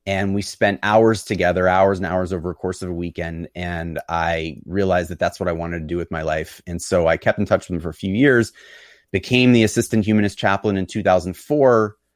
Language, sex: English, male